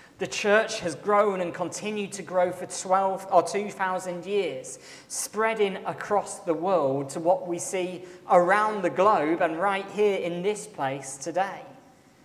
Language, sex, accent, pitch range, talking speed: English, male, British, 140-190 Hz, 150 wpm